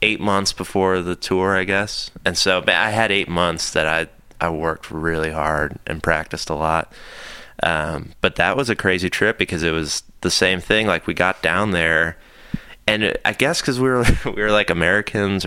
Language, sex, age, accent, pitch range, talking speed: English, male, 20-39, American, 80-95 Hz, 200 wpm